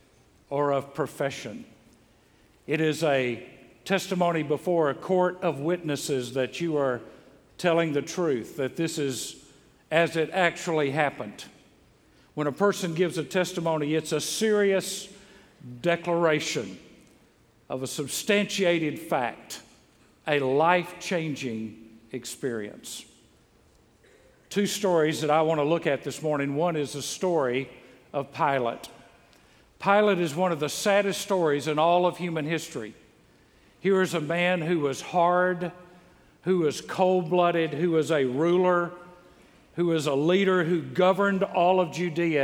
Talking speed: 130 wpm